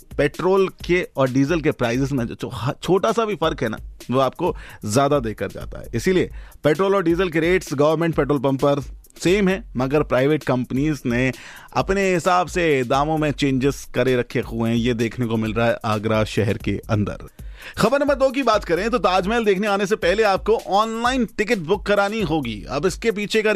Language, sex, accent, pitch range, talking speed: Hindi, male, native, 125-175 Hz, 200 wpm